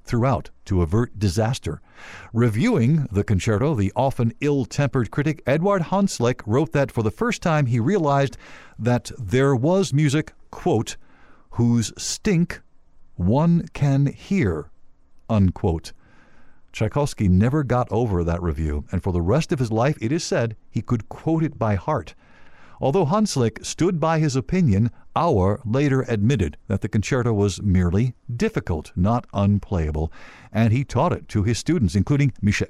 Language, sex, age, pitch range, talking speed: English, male, 50-69, 105-145 Hz, 145 wpm